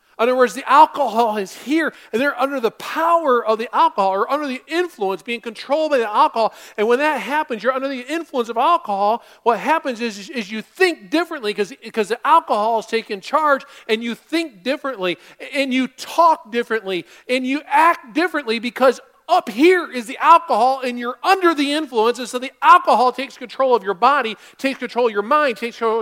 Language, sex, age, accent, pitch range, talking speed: English, male, 40-59, American, 240-315 Hz, 200 wpm